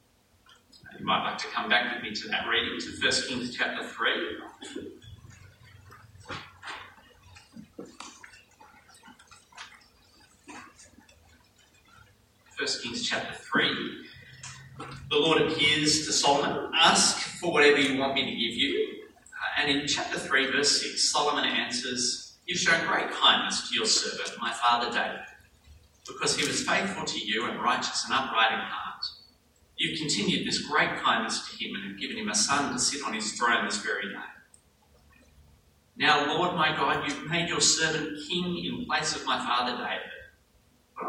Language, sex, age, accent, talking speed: English, male, 40-59, Australian, 145 wpm